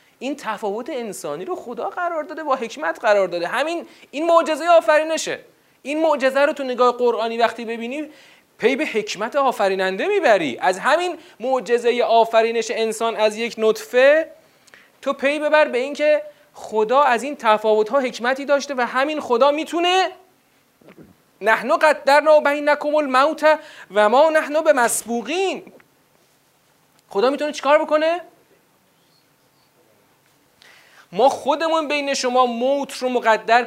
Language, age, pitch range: Persian, 30-49, 220-290 Hz